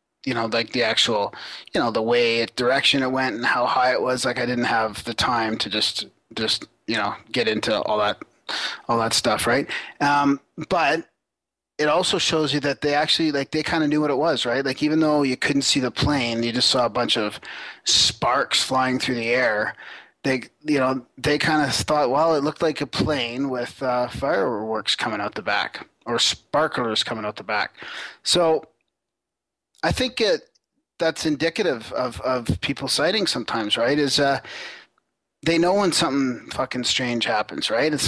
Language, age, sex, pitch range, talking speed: English, 30-49, male, 125-150 Hz, 190 wpm